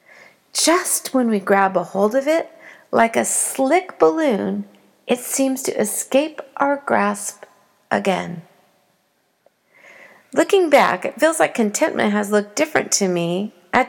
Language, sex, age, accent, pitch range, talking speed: English, female, 50-69, American, 185-260 Hz, 135 wpm